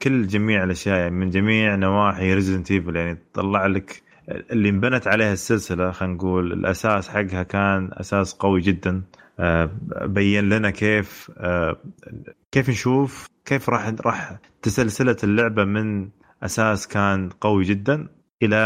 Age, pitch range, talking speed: 20-39, 95-120 Hz, 125 wpm